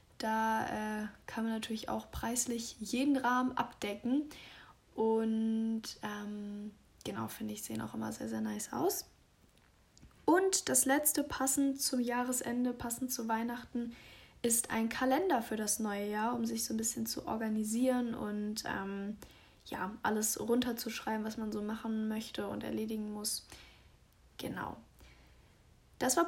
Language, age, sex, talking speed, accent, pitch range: German, 10-29, female, 140 wpm, German, 210-255 Hz